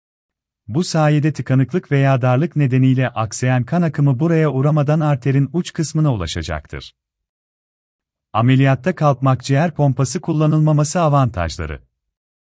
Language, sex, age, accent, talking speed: Turkish, male, 40-59, native, 100 wpm